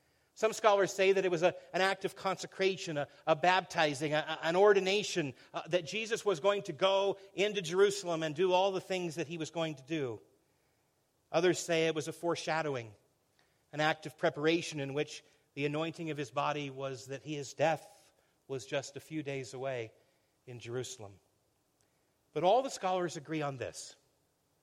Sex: male